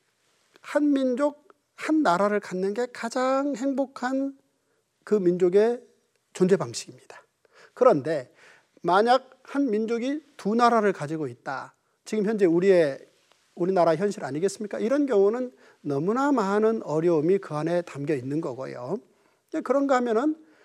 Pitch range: 170-245 Hz